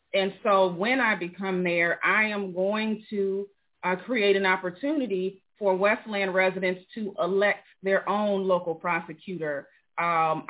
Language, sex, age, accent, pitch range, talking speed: English, female, 30-49, American, 180-205 Hz, 135 wpm